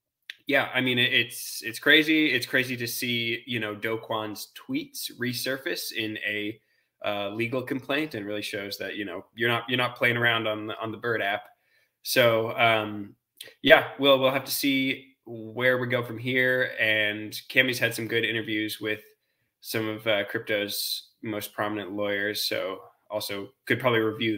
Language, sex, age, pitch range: English, male, 20-39, 105-130 Hz